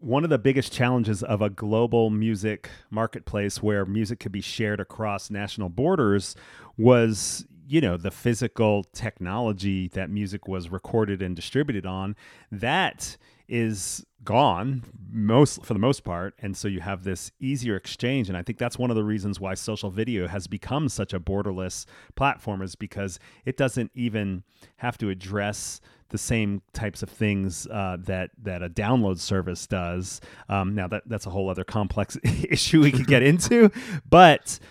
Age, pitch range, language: 30-49, 100-120 Hz, English